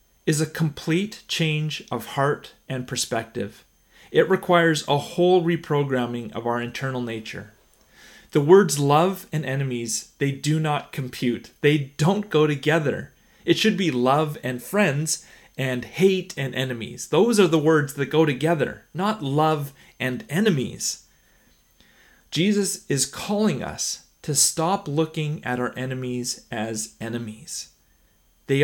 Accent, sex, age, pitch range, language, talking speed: American, male, 30-49, 125-170 Hz, English, 135 wpm